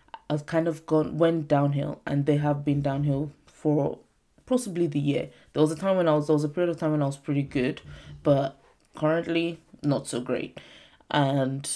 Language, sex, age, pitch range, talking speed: English, female, 20-39, 140-160 Hz, 200 wpm